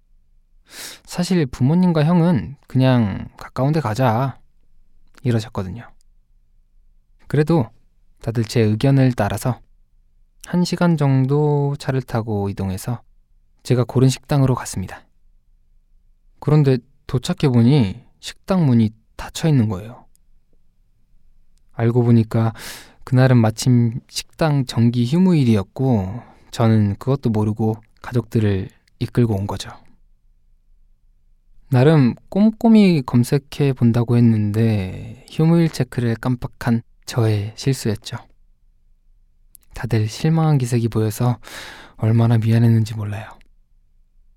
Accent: native